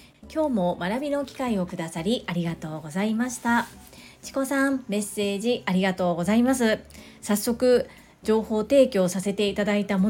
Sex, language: female, Japanese